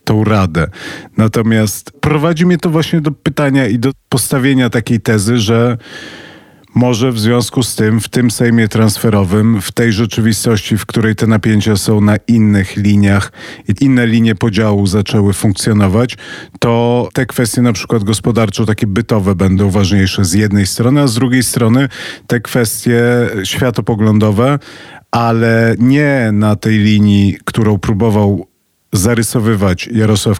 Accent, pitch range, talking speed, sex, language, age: native, 105-120 Hz, 140 wpm, male, Polish, 40-59